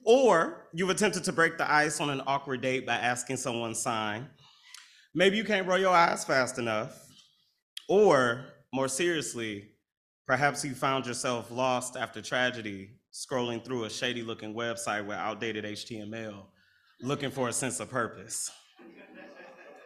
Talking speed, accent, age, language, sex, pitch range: 145 wpm, American, 30-49, English, male, 110-140 Hz